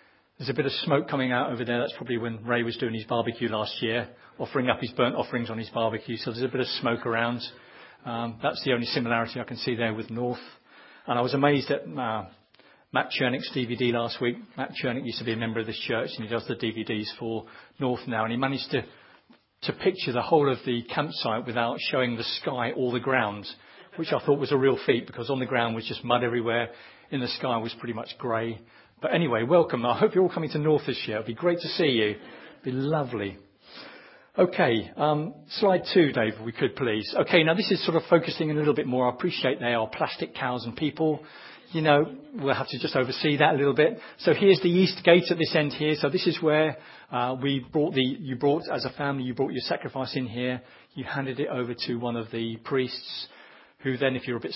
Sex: male